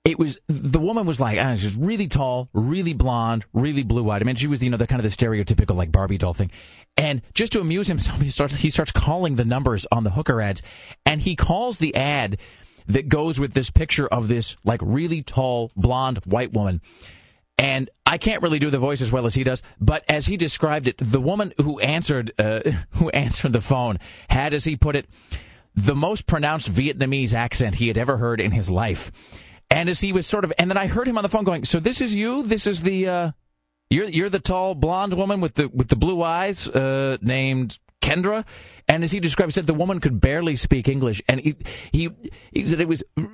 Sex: male